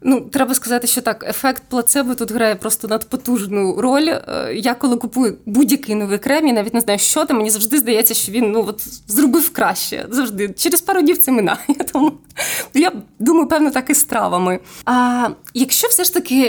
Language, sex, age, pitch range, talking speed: Ukrainian, female, 20-39, 205-255 Hz, 185 wpm